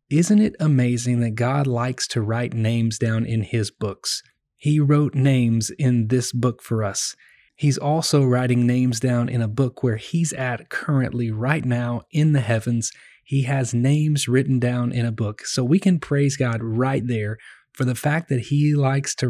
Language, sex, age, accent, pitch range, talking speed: English, male, 30-49, American, 120-140 Hz, 185 wpm